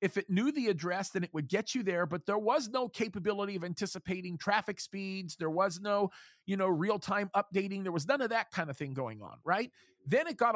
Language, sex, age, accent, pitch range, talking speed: English, male, 40-59, American, 170-210 Hz, 235 wpm